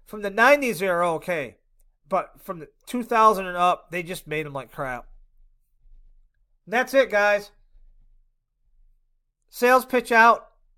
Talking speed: 140 wpm